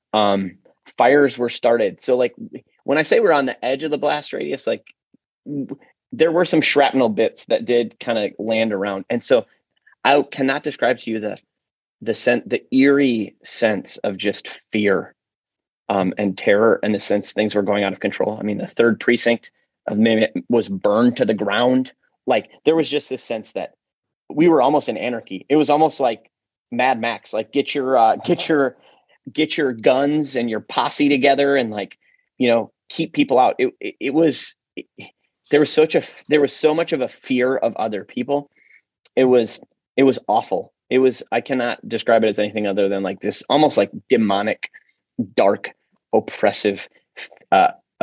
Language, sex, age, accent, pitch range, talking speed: English, male, 30-49, American, 105-145 Hz, 185 wpm